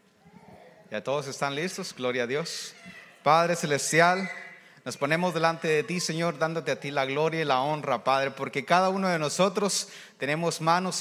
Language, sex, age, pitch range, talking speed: English, male, 30-49, 155-185 Hz, 170 wpm